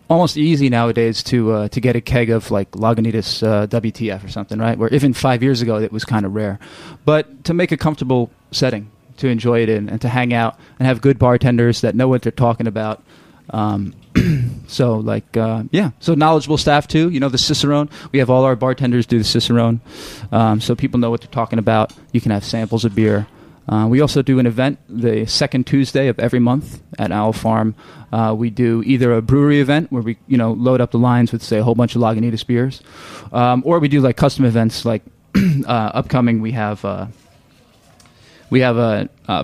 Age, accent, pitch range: 20-39, American, 110-130 Hz